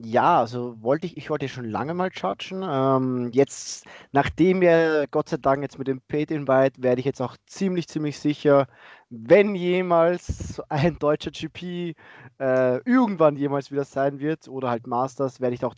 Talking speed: 170 wpm